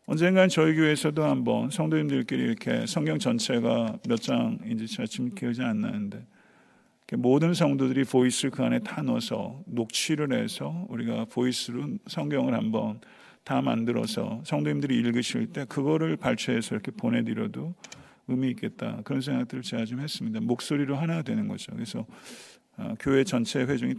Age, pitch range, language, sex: 50-69, 120-170 Hz, Korean, male